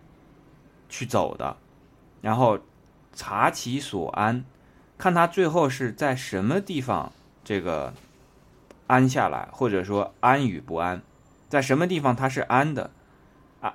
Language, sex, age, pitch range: Chinese, male, 20-39, 95-130 Hz